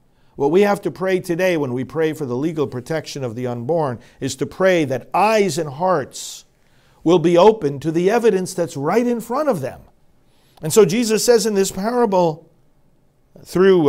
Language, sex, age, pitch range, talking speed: English, male, 50-69, 125-180 Hz, 185 wpm